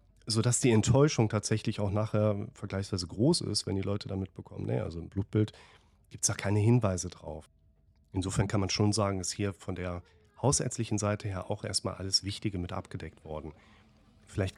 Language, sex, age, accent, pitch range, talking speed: German, male, 30-49, German, 95-115 Hz, 180 wpm